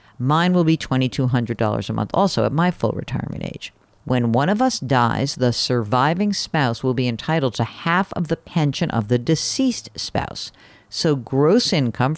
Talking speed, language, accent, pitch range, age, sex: 175 wpm, English, American, 120-170 Hz, 50-69, female